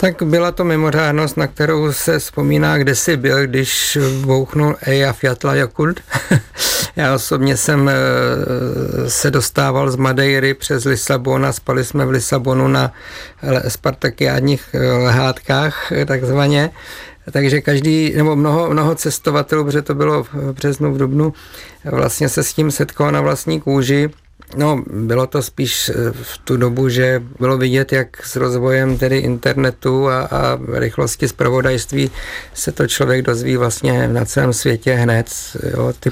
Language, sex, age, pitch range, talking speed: Czech, male, 50-69, 125-140 Hz, 140 wpm